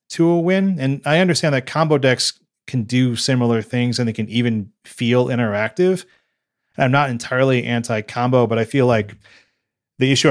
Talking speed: 175 wpm